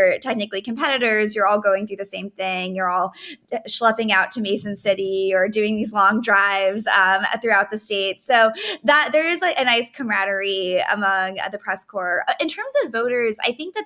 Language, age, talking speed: English, 20-39, 185 wpm